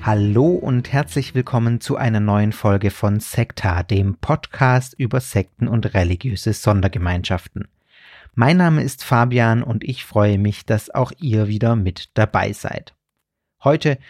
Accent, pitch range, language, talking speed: German, 110-135 Hz, German, 140 wpm